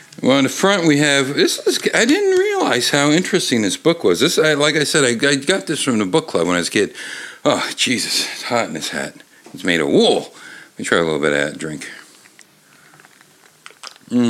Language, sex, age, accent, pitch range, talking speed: English, male, 60-79, American, 95-150 Hz, 230 wpm